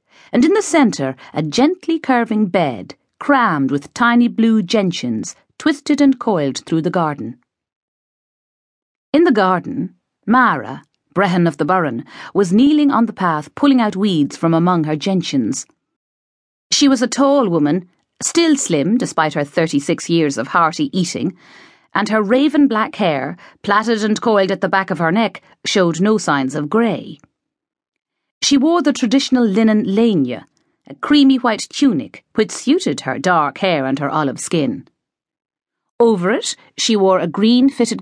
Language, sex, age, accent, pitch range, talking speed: English, female, 40-59, Irish, 170-245 Hz, 155 wpm